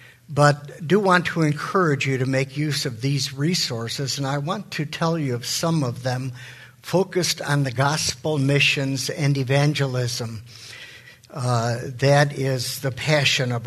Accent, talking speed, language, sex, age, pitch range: American, 155 wpm, English, male, 60-79, 130-160 Hz